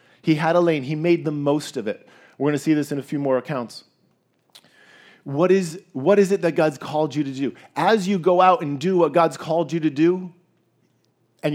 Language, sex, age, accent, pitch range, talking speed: English, male, 40-59, American, 135-170 Hz, 225 wpm